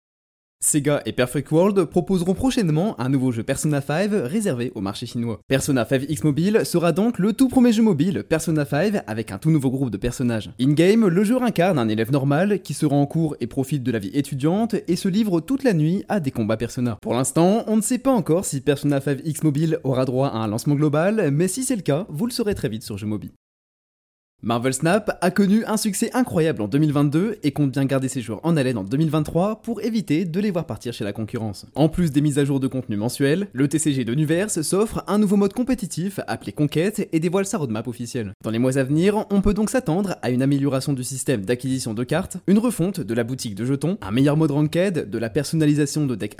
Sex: male